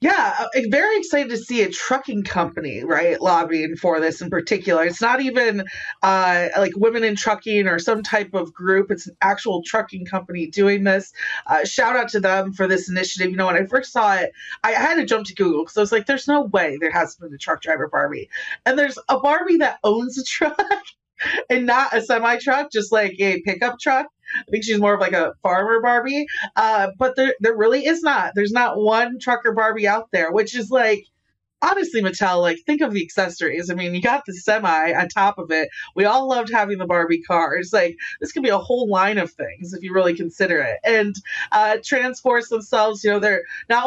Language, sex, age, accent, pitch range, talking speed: English, female, 30-49, American, 195-250 Hz, 215 wpm